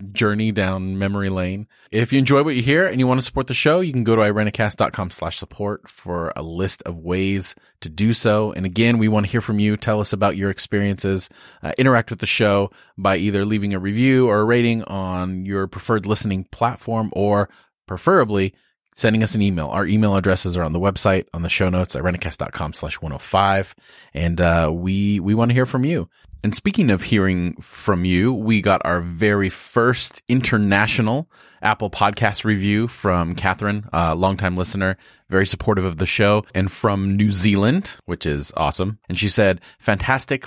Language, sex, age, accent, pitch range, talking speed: English, male, 30-49, American, 90-110 Hz, 200 wpm